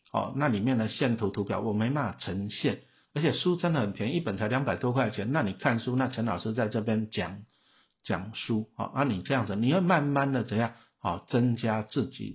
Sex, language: male, Chinese